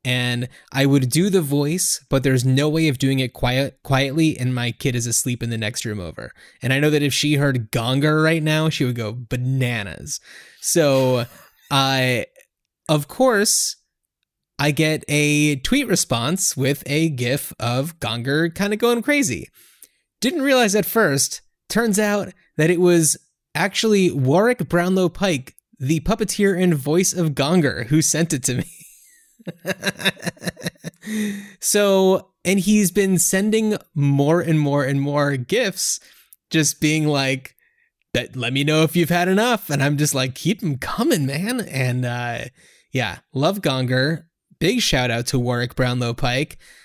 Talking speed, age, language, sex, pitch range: 160 wpm, 20-39, English, male, 130-175 Hz